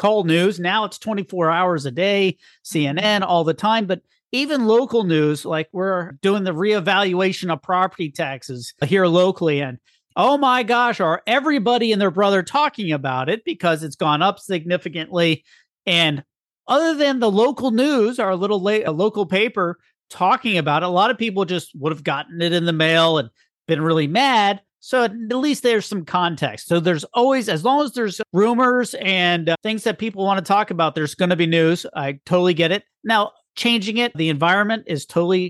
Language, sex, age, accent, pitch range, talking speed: English, male, 40-59, American, 165-220 Hz, 190 wpm